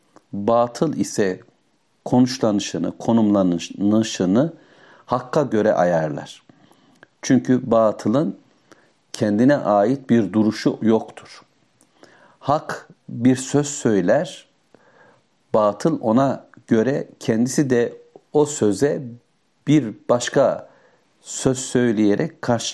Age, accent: 60-79, native